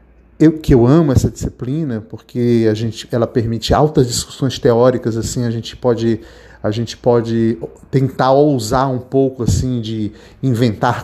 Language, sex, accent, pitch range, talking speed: Portuguese, male, Brazilian, 115-150 Hz, 150 wpm